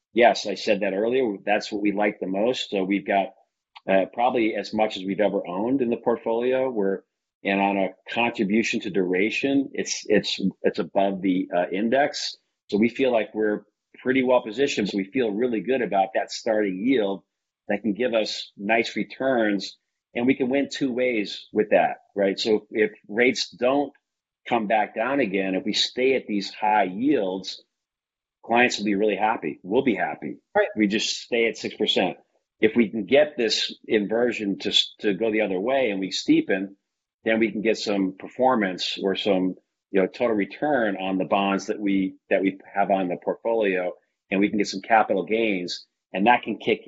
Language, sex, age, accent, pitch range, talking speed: English, male, 40-59, American, 95-115 Hz, 190 wpm